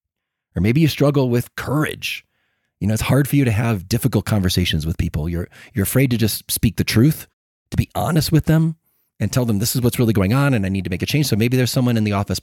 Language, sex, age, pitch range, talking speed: English, male, 30-49, 110-140 Hz, 260 wpm